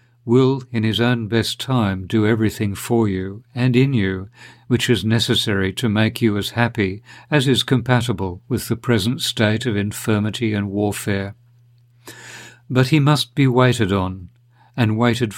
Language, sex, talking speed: English, male, 155 wpm